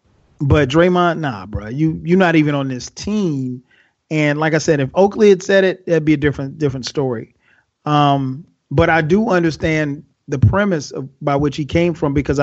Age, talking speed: 30-49, 195 wpm